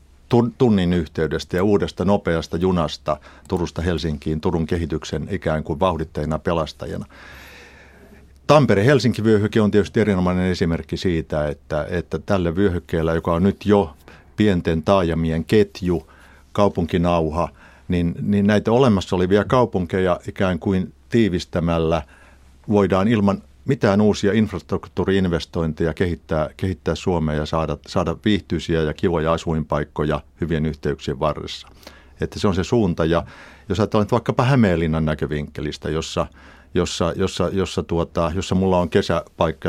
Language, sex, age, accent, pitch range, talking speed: Finnish, male, 50-69, native, 80-100 Hz, 120 wpm